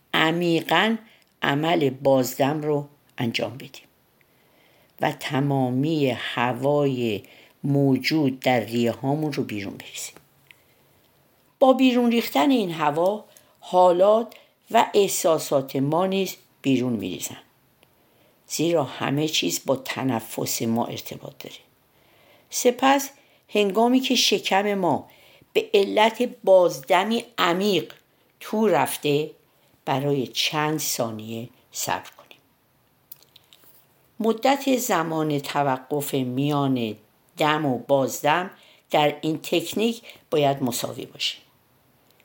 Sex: female